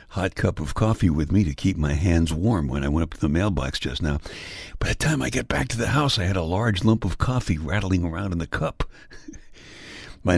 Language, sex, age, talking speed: English, male, 60-79, 245 wpm